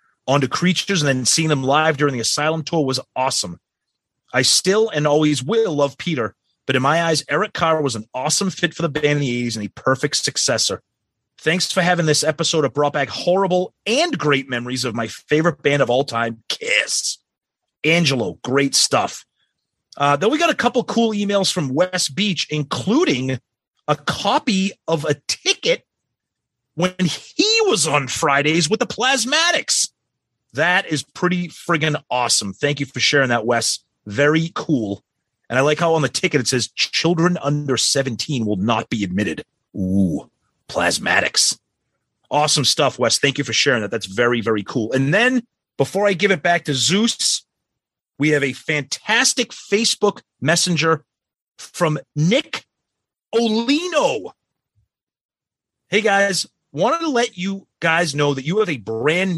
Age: 30-49